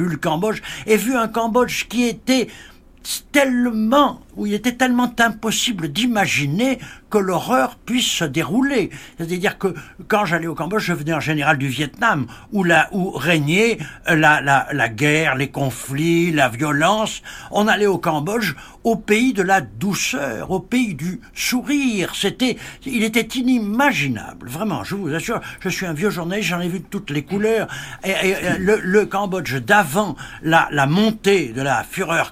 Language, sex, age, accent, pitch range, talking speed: French, male, 60-79, French, 150-215 Hz, 165 wpm